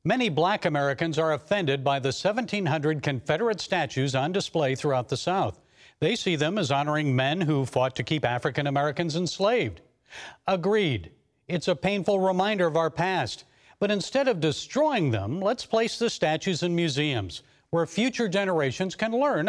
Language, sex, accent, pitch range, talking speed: English, male, American, 150-205 Hz, 160 wpm